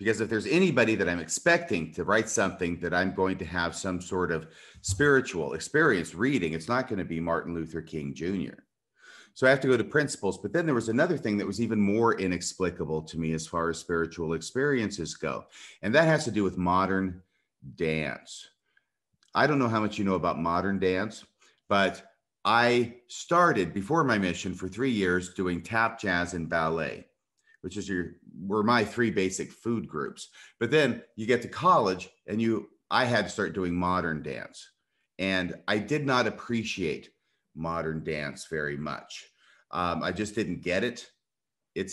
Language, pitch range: English, 85-115 Hz